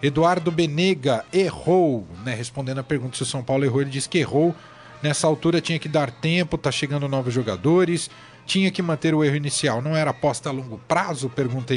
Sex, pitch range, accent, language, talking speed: male, 135-180 Hz, Brazilian, Portuguese, 200 wpm